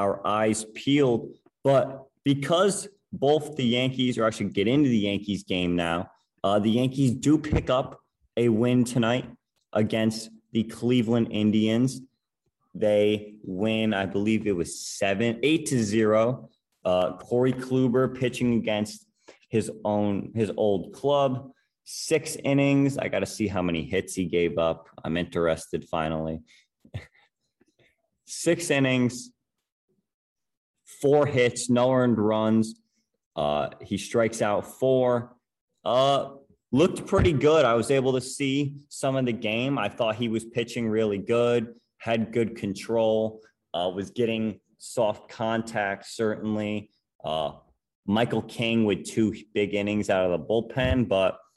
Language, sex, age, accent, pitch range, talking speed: English, male, 30-49, American, 105-130 Hz, 135 wpm